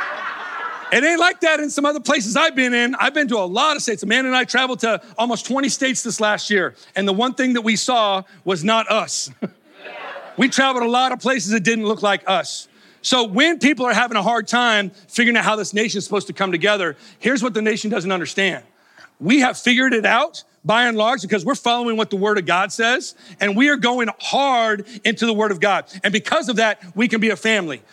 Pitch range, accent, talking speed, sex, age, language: 210-265 Hz, American, 235 wpm, male, 40-59, English